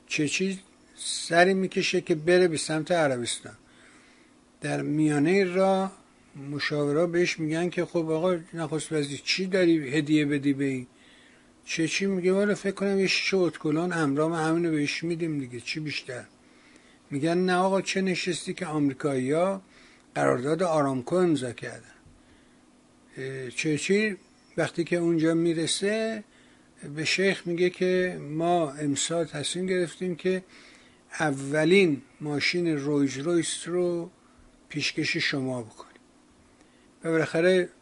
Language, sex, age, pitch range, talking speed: Persian, male, 60-79, 150-185 Hz, 115 wpm